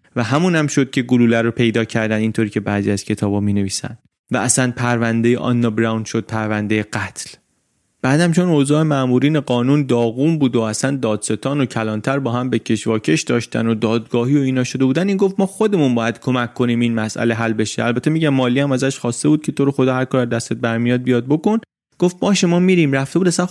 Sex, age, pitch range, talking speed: male, 30-49, 115-155 Hz, 205 wpm